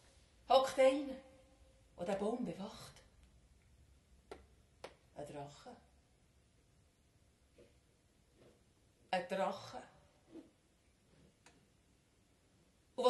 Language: German